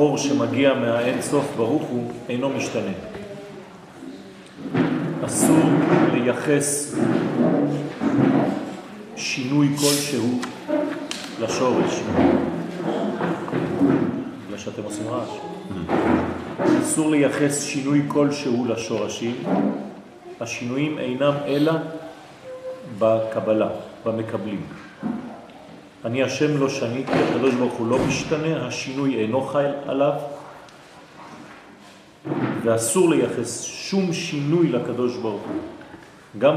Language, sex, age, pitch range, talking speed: French, male, 40-59, 120-155 Hz, 65 wpm